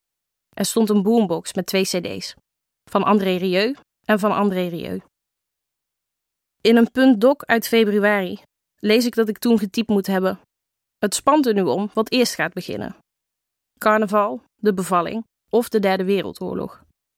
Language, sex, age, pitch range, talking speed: Dutch, female, 20-39, 185-220 Hz, 150 wpm